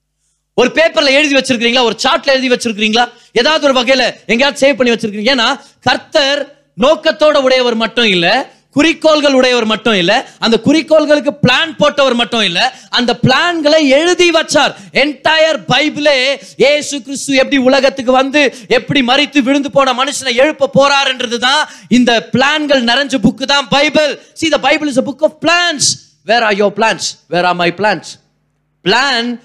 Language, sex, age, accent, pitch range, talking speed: Tamil, male, 30-49, native, 180-275 Hz, 65 wpm